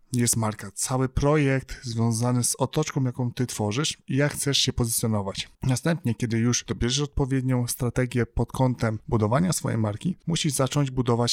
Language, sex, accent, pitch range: Polish, male, native, 115-140 Hz